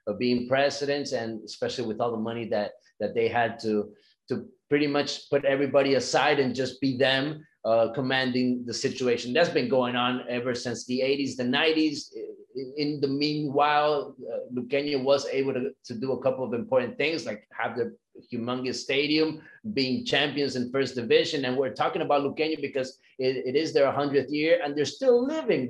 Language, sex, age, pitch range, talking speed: English, male, 30-49, 125-155 Hz, 185 wpm